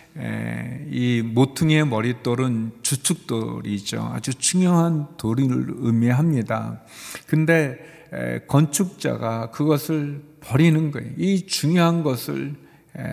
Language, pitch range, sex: Korean, 115-150 Hz, male